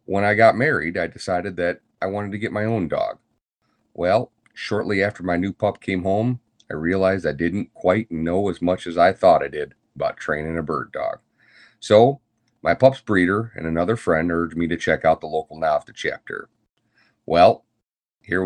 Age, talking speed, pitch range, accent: 40-59, 190 wpm, 85-110 Hz, American